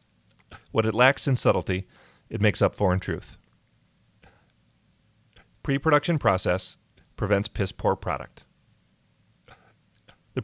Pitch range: 100-120 Hz